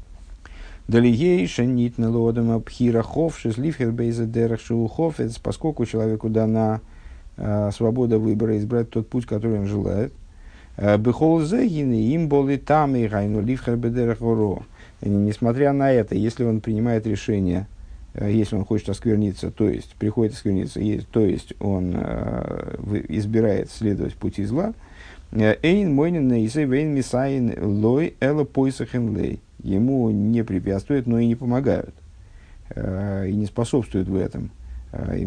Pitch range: 100-125 Hz